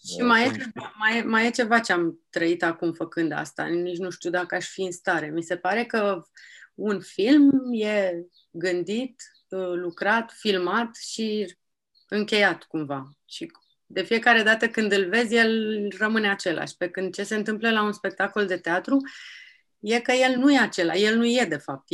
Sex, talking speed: female, 170 wpm